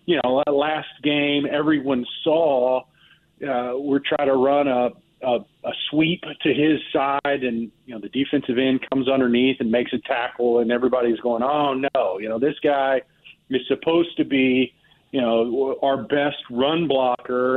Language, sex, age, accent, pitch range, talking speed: English, male, 40-59, American, 130-155 Hz, 165 wpm